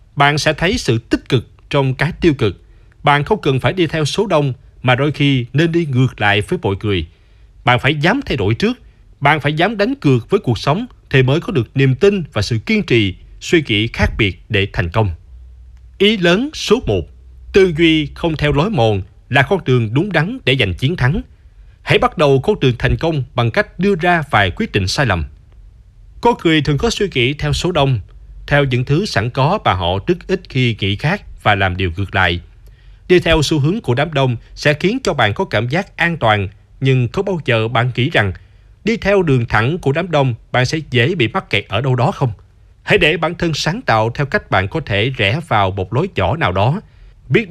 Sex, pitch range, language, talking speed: male, 105-160 Hz, Vietnamese, 225 wpm